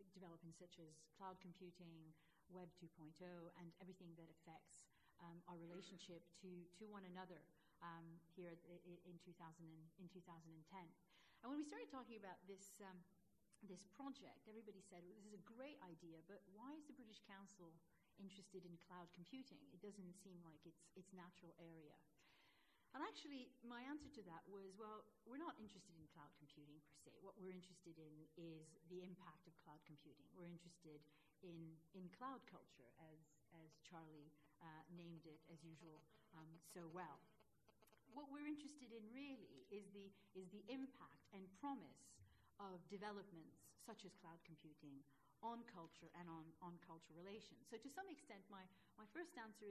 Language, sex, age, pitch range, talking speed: English, female, 40-59, 165-205 Hz, 175 wpm